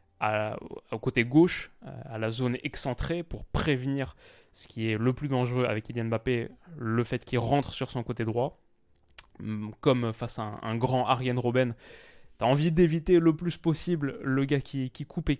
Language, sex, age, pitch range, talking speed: French, male, 20-39, 115-140 Hz, 185 wpm